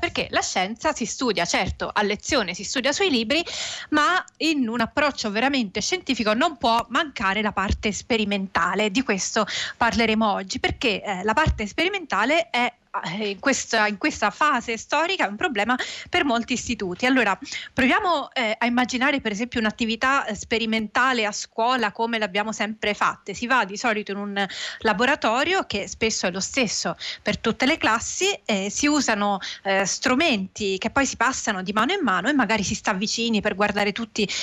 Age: 30-49